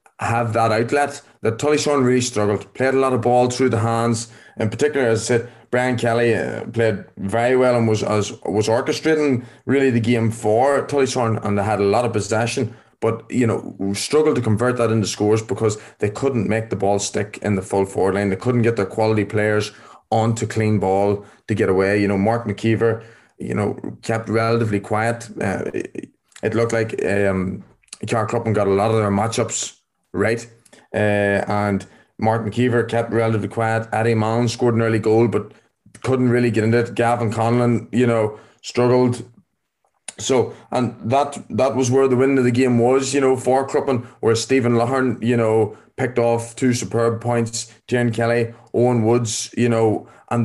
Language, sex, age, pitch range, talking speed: English, male, 20-39, 110-125 Hz, 185 wpm